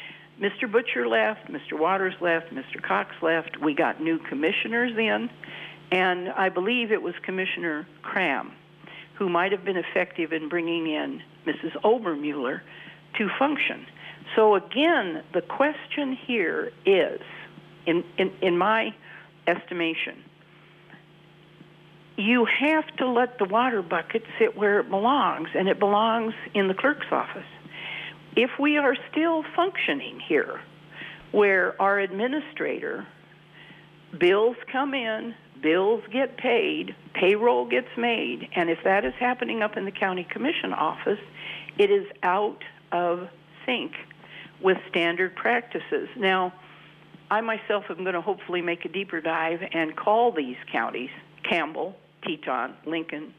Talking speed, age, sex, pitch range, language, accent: 130 wpm, 60-79, female, 170-240 Hz, English, American